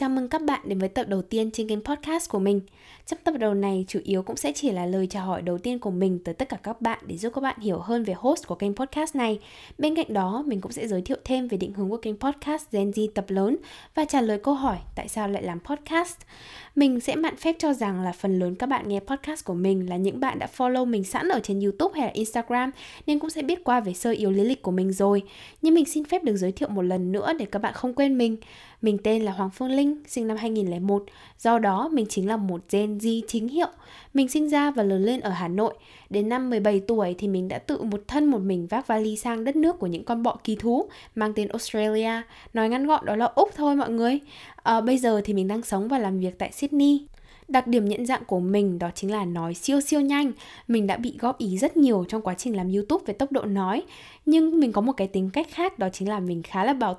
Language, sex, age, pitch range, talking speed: Vietnamese, female, 10-29, 200-270 Hz, 265 wpm